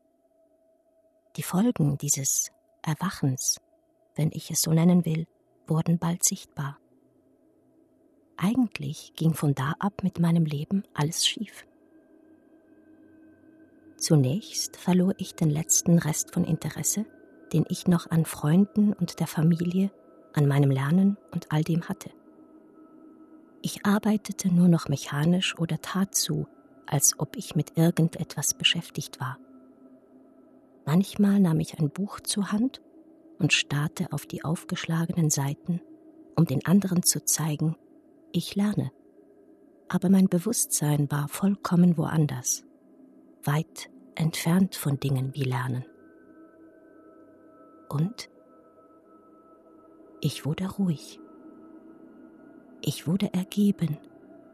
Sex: female